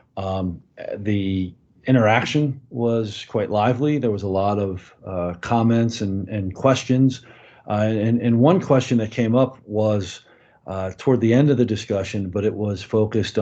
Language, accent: English, American